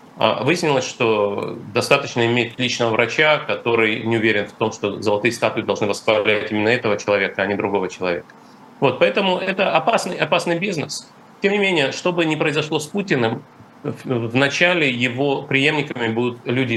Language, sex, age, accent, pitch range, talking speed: Russian, male, 30-49, native, 115-155 Hz, 155 wpm